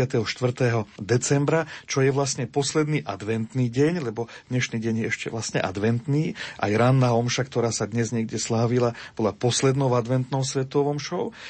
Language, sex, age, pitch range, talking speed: Slovak, male, 40-59, 115-135 Hz, 145 wpm